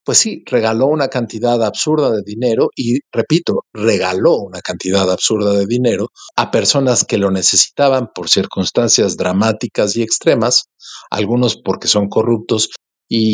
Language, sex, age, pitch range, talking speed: Spanish, male, 50-69, 105-135 Hz, 140 wpm